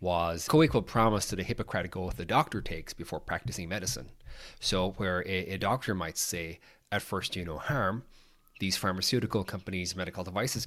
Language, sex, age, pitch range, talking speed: English, male, 30-49, 95-115 Hz, 185 wpm